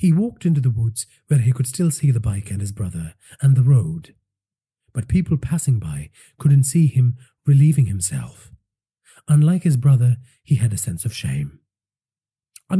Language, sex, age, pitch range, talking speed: English, male, 40-59, 110-165 Hz, 175 wpm